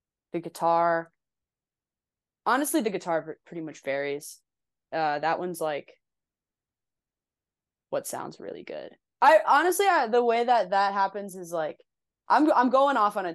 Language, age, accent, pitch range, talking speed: English, 20-39, American, 165-200 Hz, 145 wpm